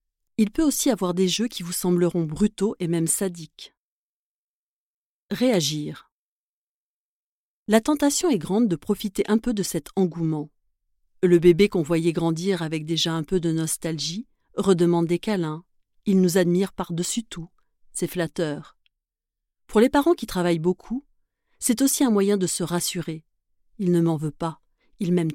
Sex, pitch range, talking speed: female, 165-205 Hz, 155 wpm